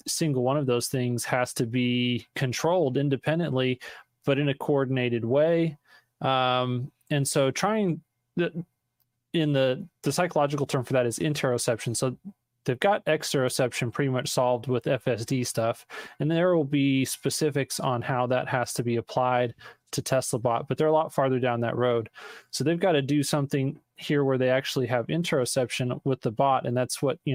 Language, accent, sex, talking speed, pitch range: English, American, male, 180 wpm, 125-145 Hz